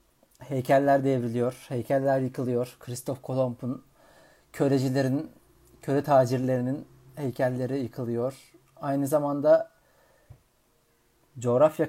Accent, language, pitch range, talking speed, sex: native, Turkish, 120-140 Hz, 70 wpm, male